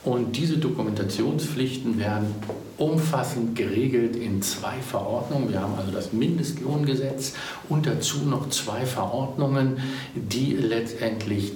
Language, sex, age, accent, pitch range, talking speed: German, male, 60-79, German, 100-135 Hz, 110 wpm